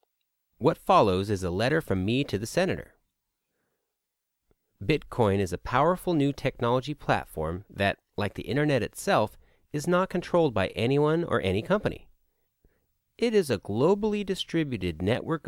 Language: English